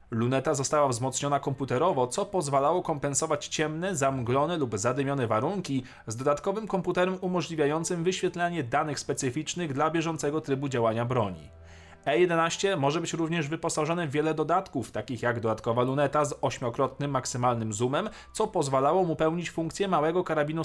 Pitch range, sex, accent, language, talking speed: 130-170 Hz, male, native, Polish, 135 wpm